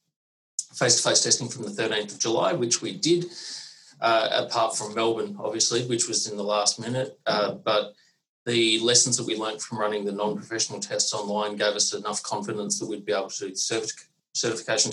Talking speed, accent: 185 wpm, Australian